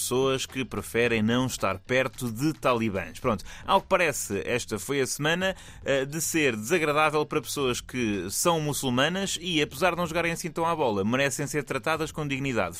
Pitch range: 110-175 Hz